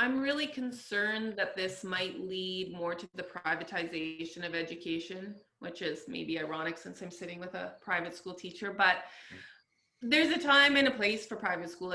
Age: 20-39